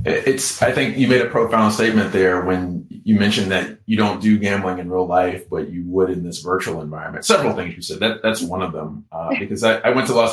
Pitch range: 95-125 Hz